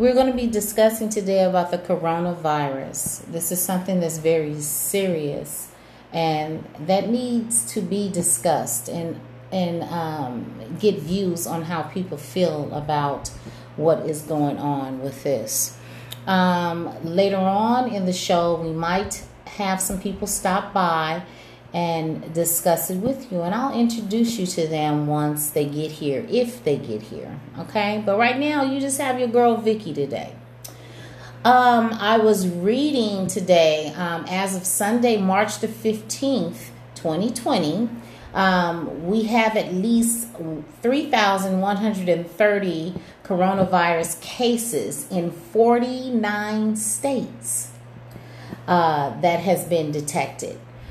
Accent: American